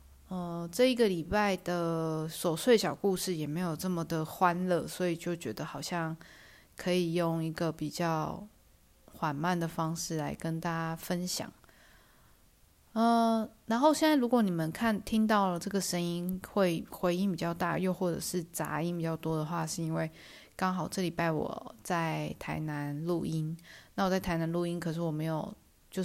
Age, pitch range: 20-39, 160-185 Hz